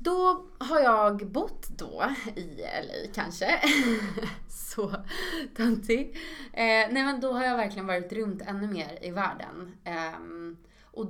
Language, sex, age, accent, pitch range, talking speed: Swedish, female, 20-39, native, 165-205 Hz, 125 wpm